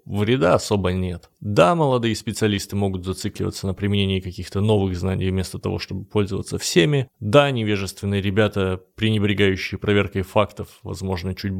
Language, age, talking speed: Russian, 20-39, 135 wpm